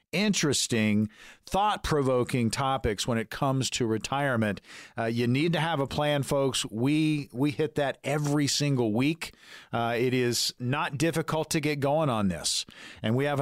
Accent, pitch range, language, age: American, 125-160 Hz, English, 50-69